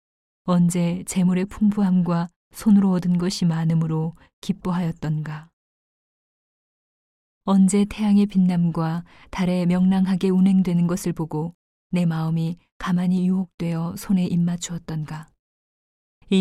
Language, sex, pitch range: Korean, female, 170-190 Hz